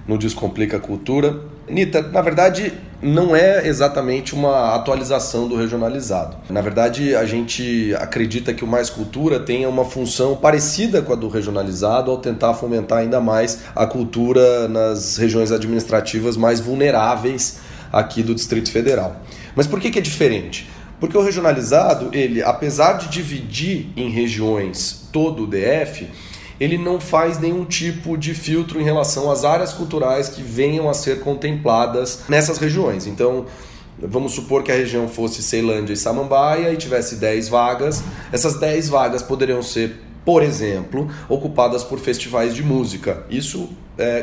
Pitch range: 115-150 Hz